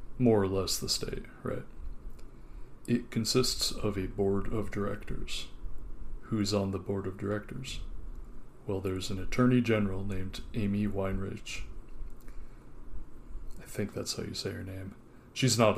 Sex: male